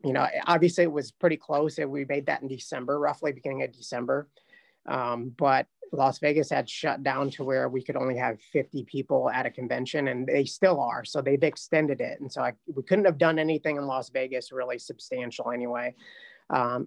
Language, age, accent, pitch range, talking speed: English, 30-49, American, 130-160 Hz, 205 wpm